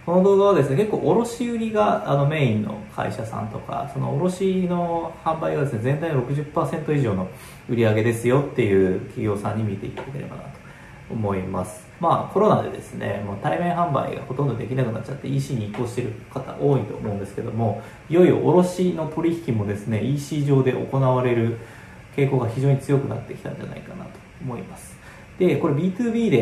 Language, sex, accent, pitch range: Japanese, male, native, 110-150 Hz